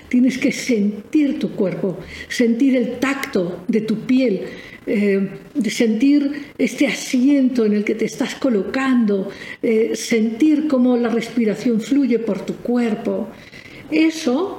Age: 50-69